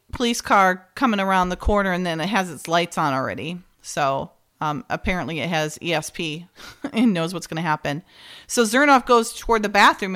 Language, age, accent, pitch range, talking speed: English, 40-59, American, 175-220 Hz, 190 wpm